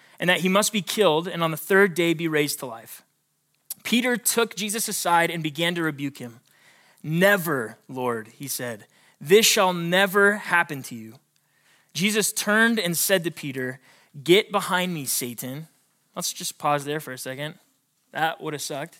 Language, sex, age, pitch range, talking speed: English, male, 20-39, 140-190 Hz, 175 wpm